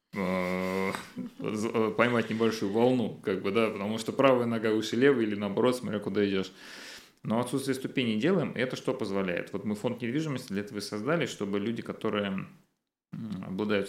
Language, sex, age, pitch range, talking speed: Russian, male, 30-49, 95-120 Hz, 155 wpm